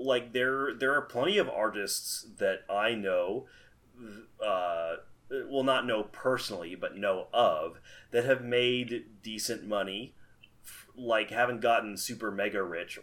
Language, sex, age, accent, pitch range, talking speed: English, male, 30-49, American, 95-115 Hz, 135 wpm